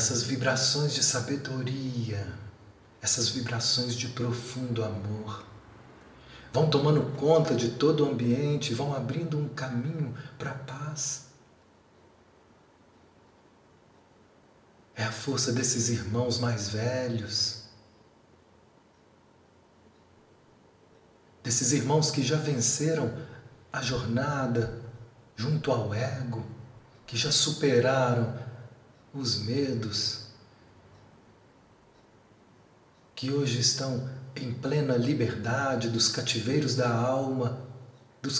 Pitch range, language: 115-140 Hz, Portuguese